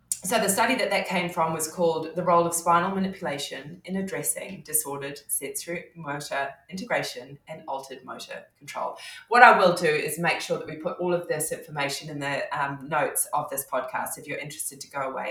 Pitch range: 160-225 Hz